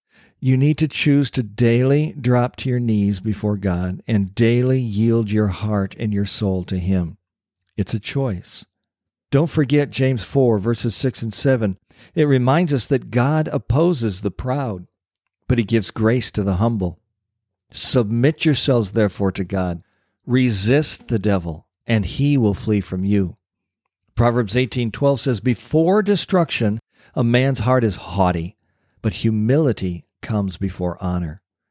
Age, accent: 50-69, American